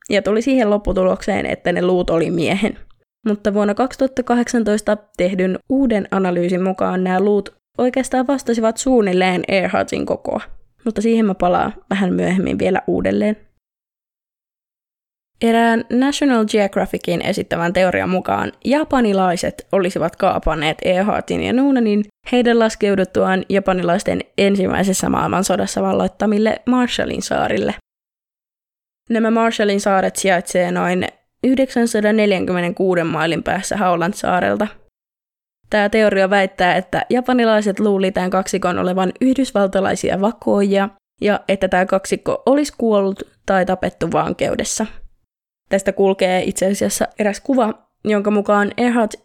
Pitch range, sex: 185-230 Hz, female